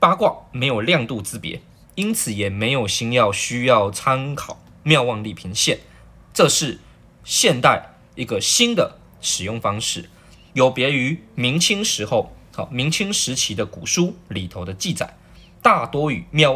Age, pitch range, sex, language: 20-39, 105-175 Hz, male, Chinese